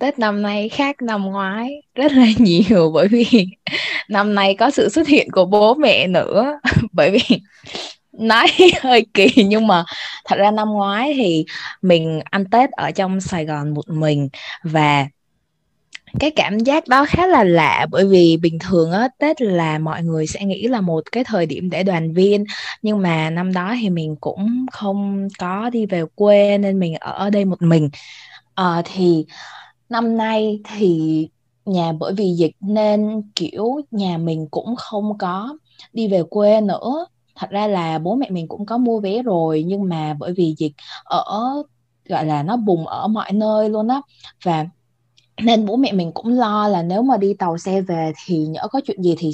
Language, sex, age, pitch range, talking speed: Vietnamese, female, 20-39, 170-225 Hz, 185 wpm